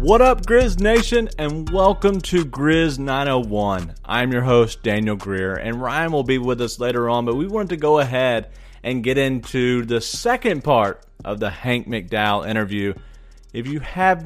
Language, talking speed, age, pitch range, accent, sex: English, 175 wpm, 30-49, 105-145 Hz, American, male